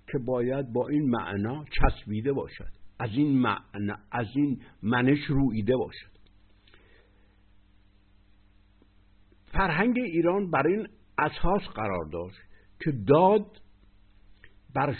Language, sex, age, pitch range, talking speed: Persian, male, 60-79, 100-140 Hz, 100 wpm